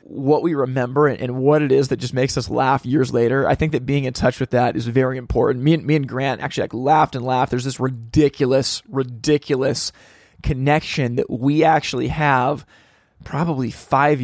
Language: English